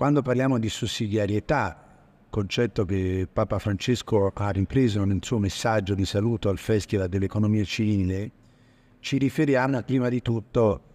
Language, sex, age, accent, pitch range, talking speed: Italian, male, 50-69, native, 100-130 Hz, 130 wpm